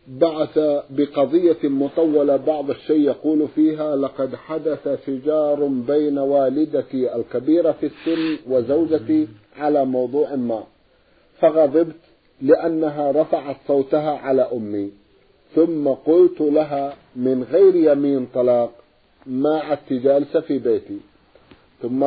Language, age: Arabic, 50-69